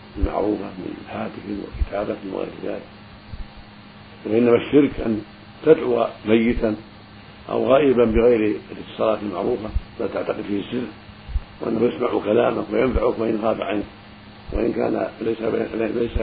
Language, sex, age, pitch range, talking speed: Arabic, male, 50-69, 105-115 Hz, 110 wpm